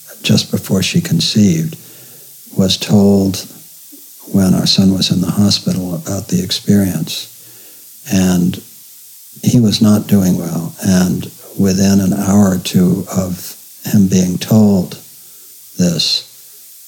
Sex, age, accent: male, 60-79, American